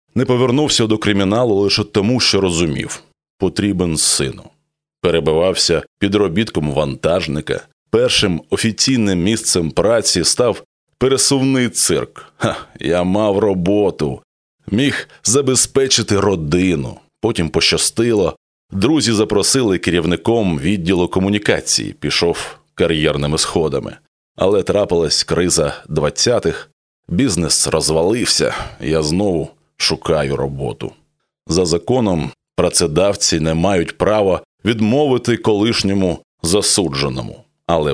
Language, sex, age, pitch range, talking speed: Ukrainian, male, 20-39, 85-115 Hz, 90 wpm